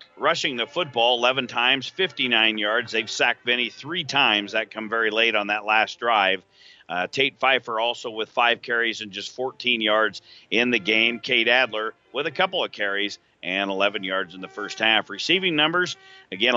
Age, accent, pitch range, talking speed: 50-69, American, 110-130 Hz, 185 wpm